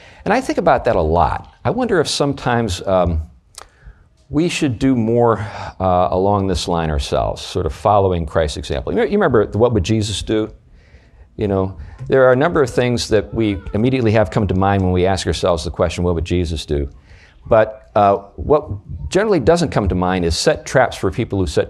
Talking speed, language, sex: 205 wpm, English, male